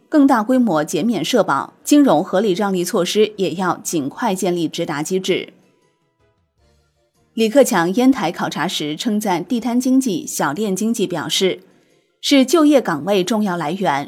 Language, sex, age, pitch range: Chinese, female, 20-39, 180-255 Hz